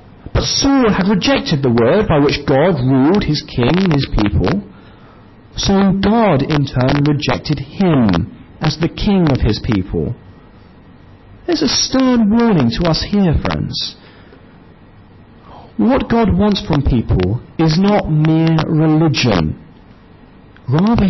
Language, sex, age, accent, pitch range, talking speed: English, male, 40-59, British, 120-195 Hz, 130 wpm